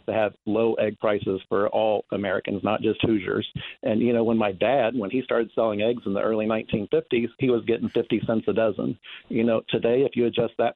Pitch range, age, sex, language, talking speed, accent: 110-125 Hz, 50-69, male, English, 225 wpm, American